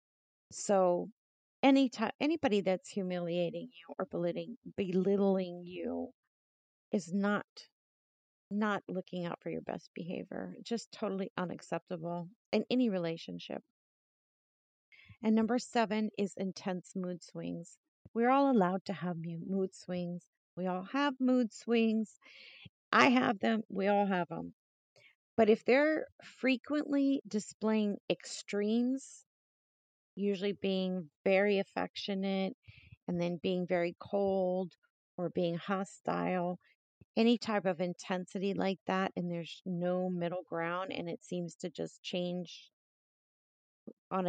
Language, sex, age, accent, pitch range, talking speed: English, female, 40-59, American, 175-215 Hz, 120 wpm